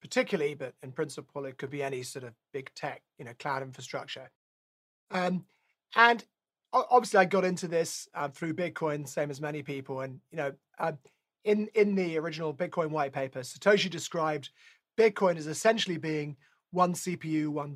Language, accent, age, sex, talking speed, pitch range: English, British, 30-49, male, 170 wpm, 155-200 Hz